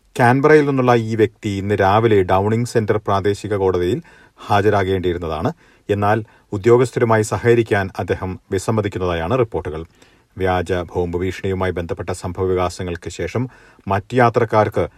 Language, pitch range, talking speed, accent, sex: Malayalam, 95-120 Hz, 105 wpm, native, male